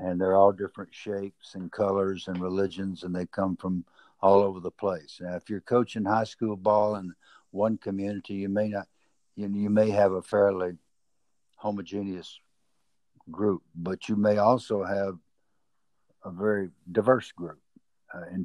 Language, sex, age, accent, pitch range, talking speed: English, male, 60-79, American, 95-105 Hz, 165 wpm